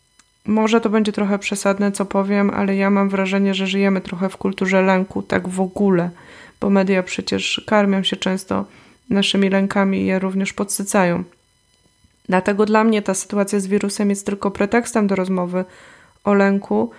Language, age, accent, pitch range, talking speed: Polish, 20-39, native, 190-210 Hz, 165 wpm